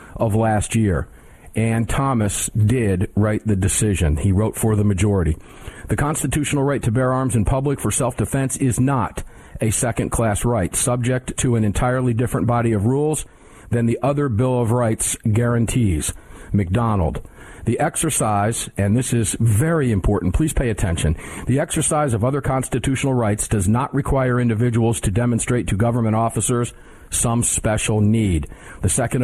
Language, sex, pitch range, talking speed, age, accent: English, male, 105-130 Hz, 155 wpm, 50-69, American